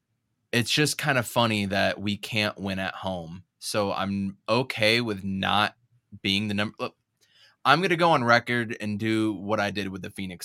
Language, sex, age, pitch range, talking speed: English, male, 20-39, 95-120 Hz, 190 wpm